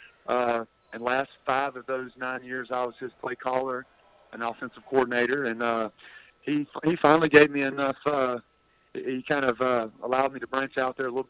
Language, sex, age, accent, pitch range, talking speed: English, male, 40-59, American, 120-140 Hz, 195 wpm